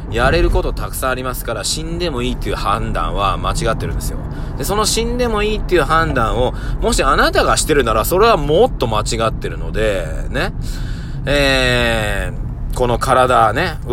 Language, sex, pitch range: Japanese, male, 110-145 Hz